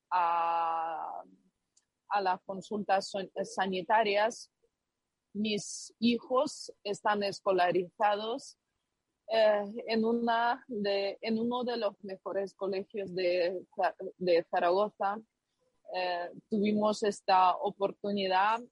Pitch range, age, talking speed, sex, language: 190-225 Hz, 30-49, 85 wpm, female, Spanish